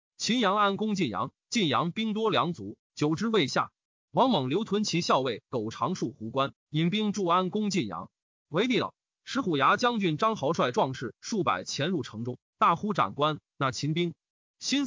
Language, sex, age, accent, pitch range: Chinese, male, 30-49, native, 145-215 Hz